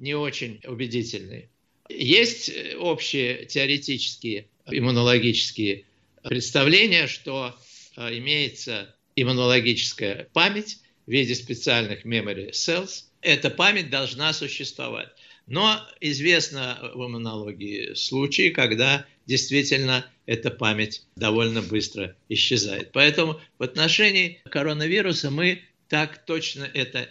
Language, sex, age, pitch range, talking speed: Russian, male, 50-69, 120-155 Hz, 90 wpm